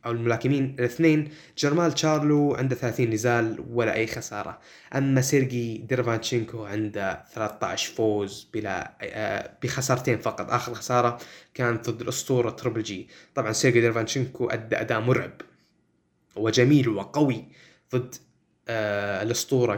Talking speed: 115 wpm